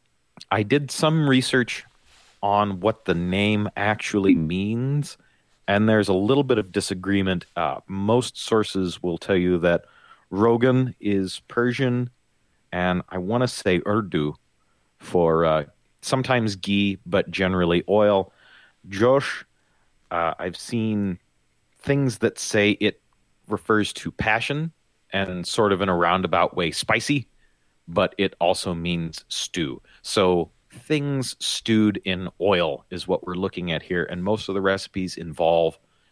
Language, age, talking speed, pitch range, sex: English, 30-49, 135 wpm, 85-110 Hz, male